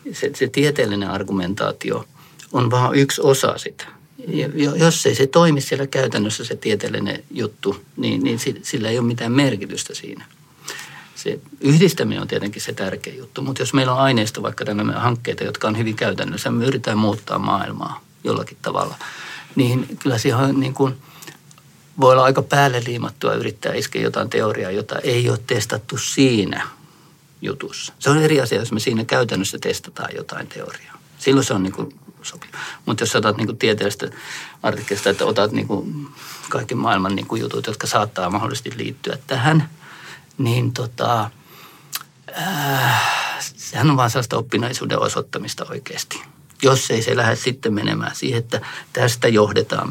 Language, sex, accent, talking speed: Finnish, male, native, 155 wpm